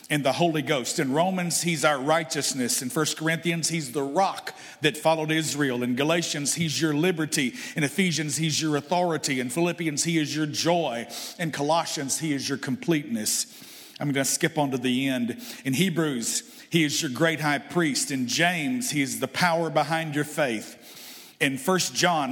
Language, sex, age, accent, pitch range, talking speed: English, male, 50-69, American, 145-175 Hz, 180 wpm